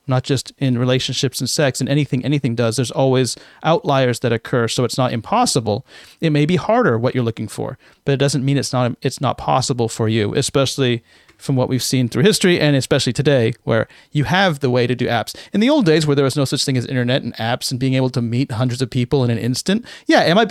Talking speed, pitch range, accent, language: 245 wpm, 130-160 Hz, American, English